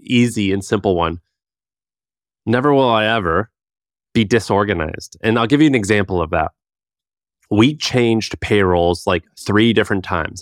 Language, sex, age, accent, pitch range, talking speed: English, male, 30-49, American, 100-130 Hz, 145 wpm